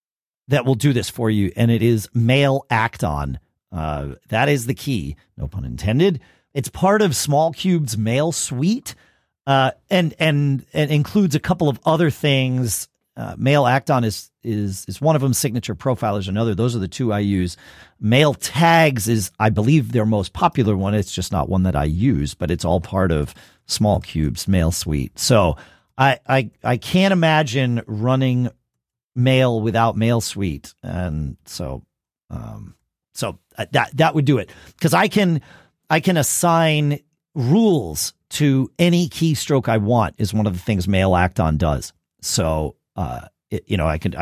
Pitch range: 95-145 Hz